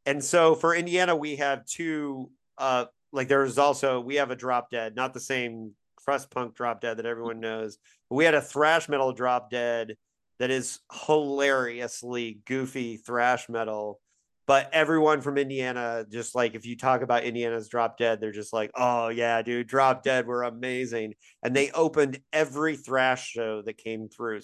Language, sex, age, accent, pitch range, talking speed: English, male, 40-59, American, 120-145 Hz, 175 wpm